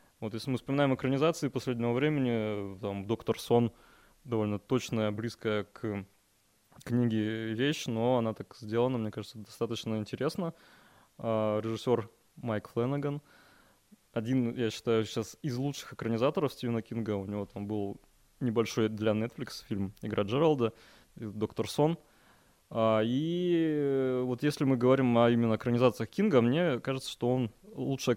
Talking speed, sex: 135 wpm, male